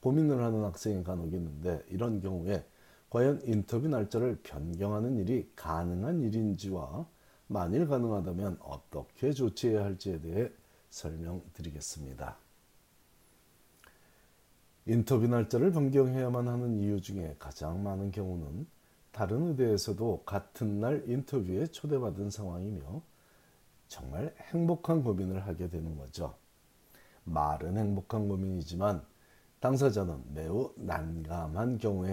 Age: 40-59